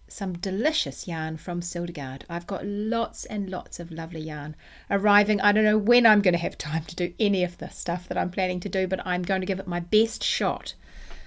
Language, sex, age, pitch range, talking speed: English, female, 40-59, 175-230 Hz, 230 wpm